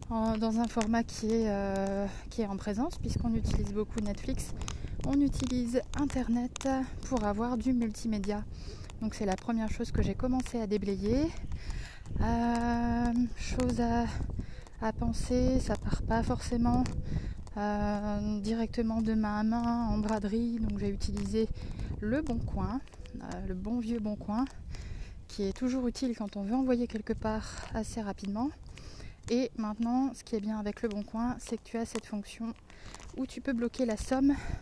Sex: female